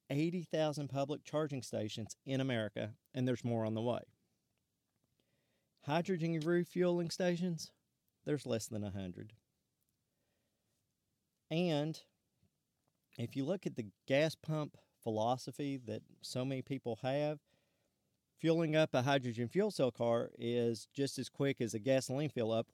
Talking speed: 130 wpm